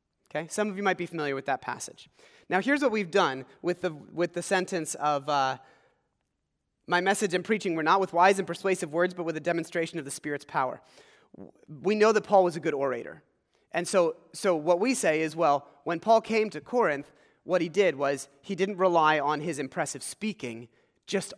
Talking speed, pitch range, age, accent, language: 210 wpm, 155-215 Hz, 30-49, American, English